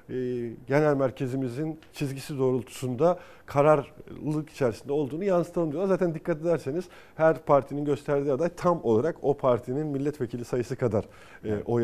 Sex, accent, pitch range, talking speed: male, native, 125-160 Hz, 120 wpm